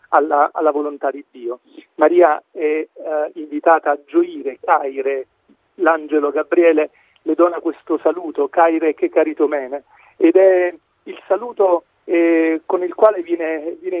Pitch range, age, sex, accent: 150-210 Hz, 40-59, male, native